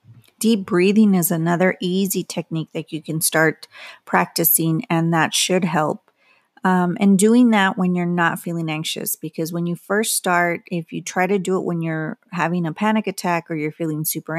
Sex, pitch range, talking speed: female, 160-185 Hz, 190 wpm